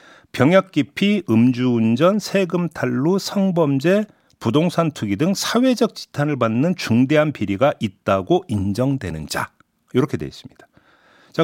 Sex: male